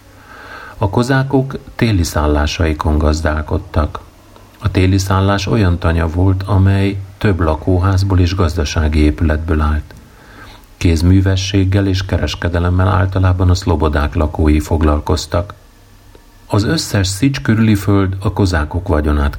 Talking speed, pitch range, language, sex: 100 wpm, 85-100 Hz, Hungarian, male